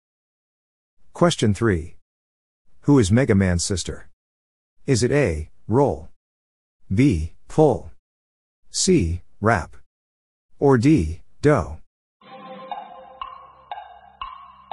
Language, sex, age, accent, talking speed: English, male, 50-69, American, 75 wpm